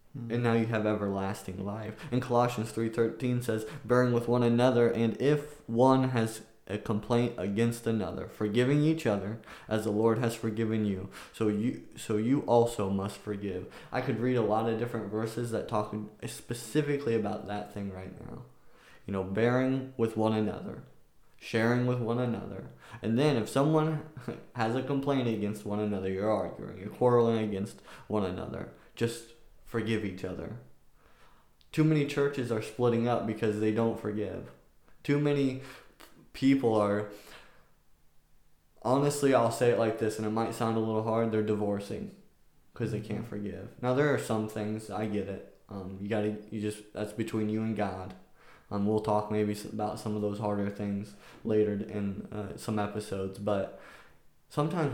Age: 20-39